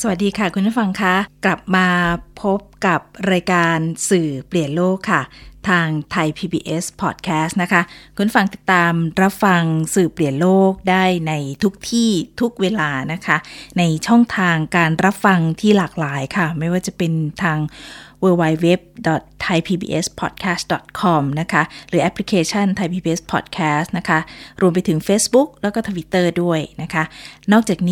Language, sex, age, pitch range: Thai, female, 20-39, 160-195 Hz